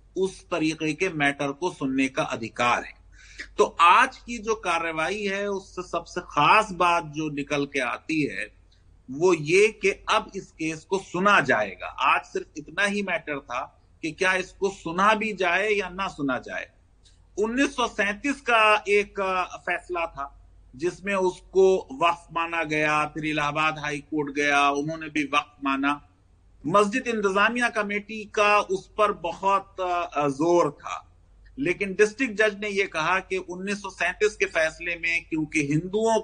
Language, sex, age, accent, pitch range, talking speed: Hindi, male, 30-49, native, 150-205 Hz, 145 wpm